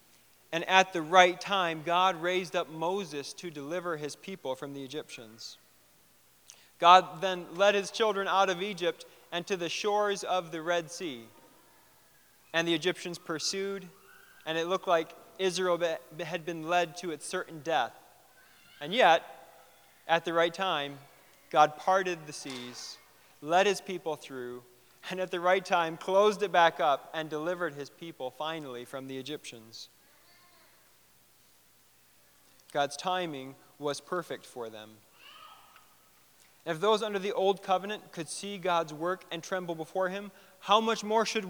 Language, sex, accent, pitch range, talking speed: English, male, American, 145-190 Hz, 150 wpm